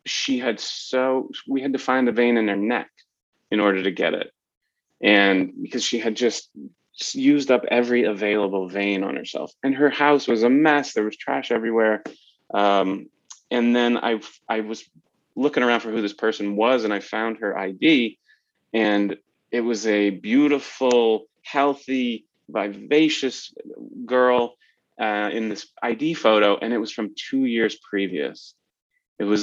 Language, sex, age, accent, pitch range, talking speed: English, male, 30-49, American, 100-125 Hz, 160 wpm